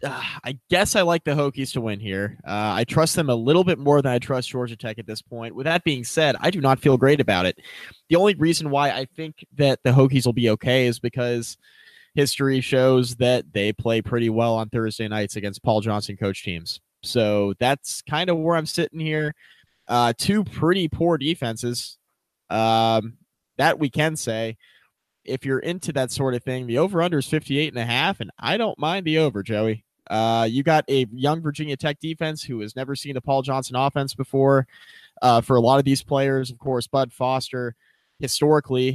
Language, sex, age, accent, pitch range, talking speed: English, male, 20-39, American, 115-145 Hz, 200 wpm